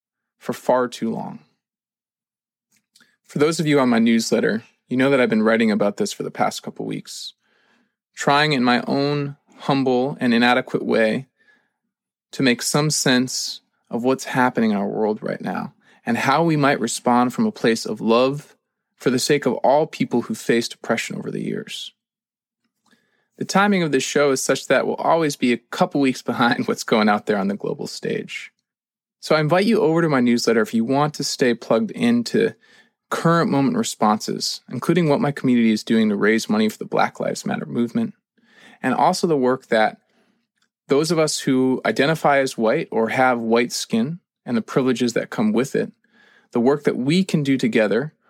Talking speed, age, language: 190 wpm, 20-39, English